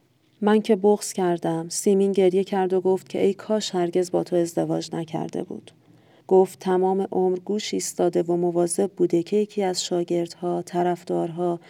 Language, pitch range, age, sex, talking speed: Persian, 165-195 Hz, 40-59, female, 160 wpm